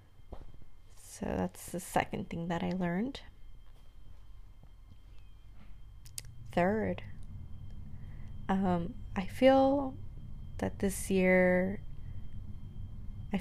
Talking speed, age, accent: 70 wpm, 20-39, American